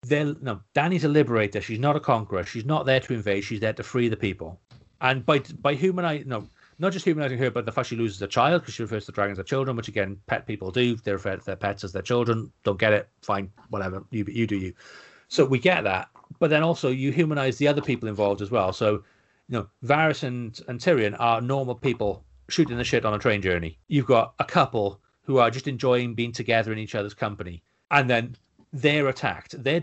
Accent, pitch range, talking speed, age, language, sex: British, 105-135 Hz, 235 wpm, 40-59, English, male